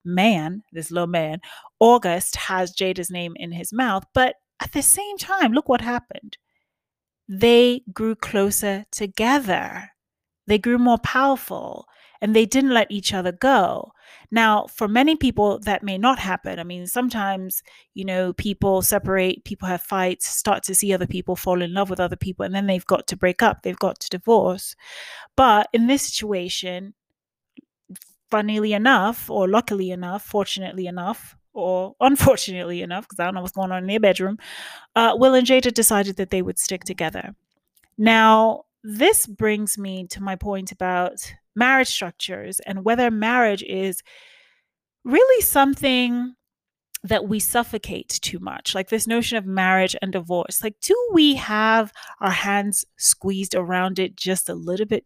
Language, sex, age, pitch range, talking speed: English, female, 30-49, 185-240 Hz, 160 wpm